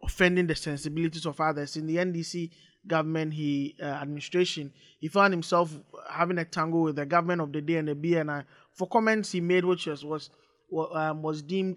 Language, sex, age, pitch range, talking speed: English, male, 20-39, 155-185 Hz, 190 wpm